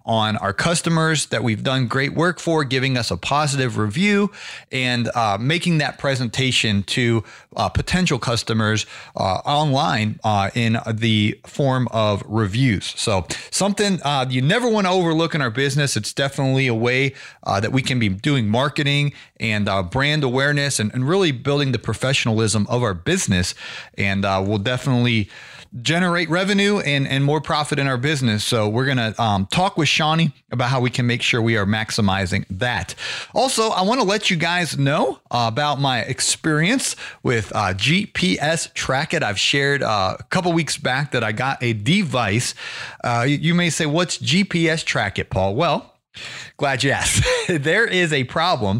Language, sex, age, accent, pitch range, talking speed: English, male, 30-49, American, 115-155 Hz, 175 wpm